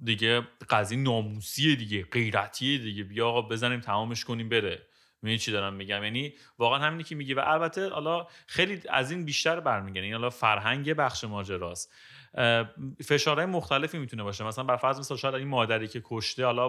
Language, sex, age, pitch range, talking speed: Persian, male, 30-49, 105-135 Hz, 170 wpm